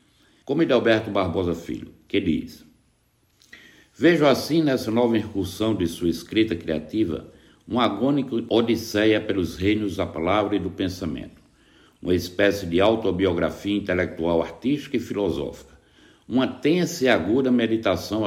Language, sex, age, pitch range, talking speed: Portuguese, male, 60-79, 95-120 Hz, 125 wpm